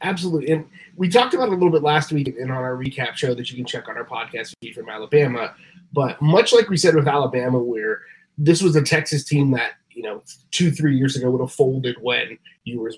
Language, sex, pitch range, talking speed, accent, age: English, male, 140-170 Hz, 235 wpm, American, 20-39